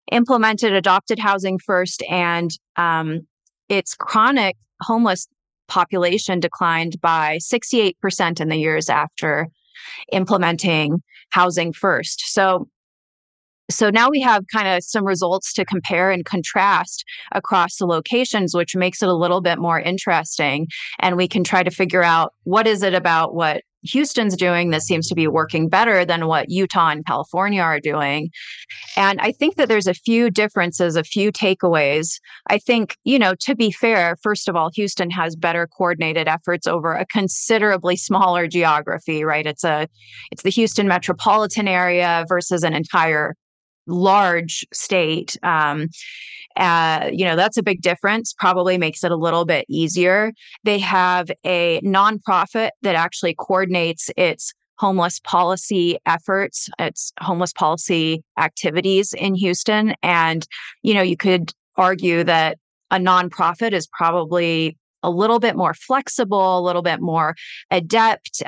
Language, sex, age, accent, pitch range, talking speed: English, female, 30-49, American, 165-200 Hz, 145 wpm